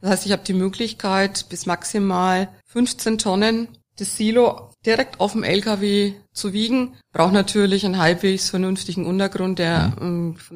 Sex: female